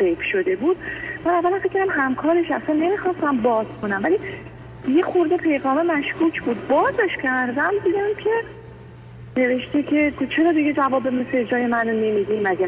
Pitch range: 200-265 Hz